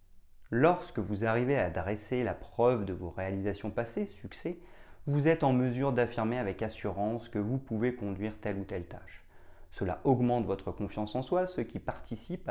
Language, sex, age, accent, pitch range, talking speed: French, male, 30-49, French, 95-125 Hz, 175 wpm